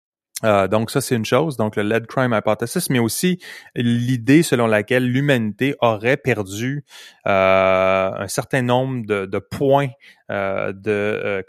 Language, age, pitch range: French, 30-49, 105-125 Hz